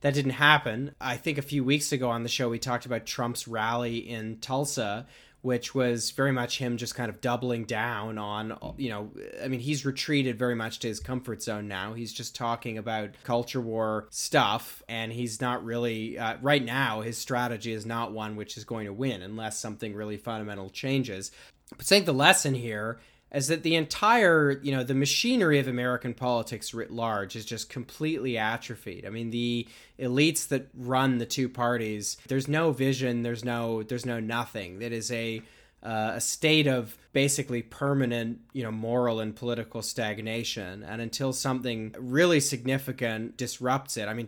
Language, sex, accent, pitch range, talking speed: English, male, American, 110-130 Hz, 185 wpm